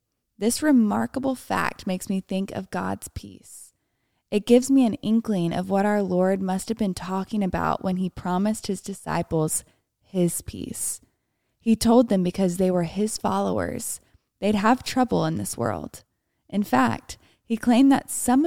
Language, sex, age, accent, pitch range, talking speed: English, female, 20-39, American, 175-215 Hz, 160 wpm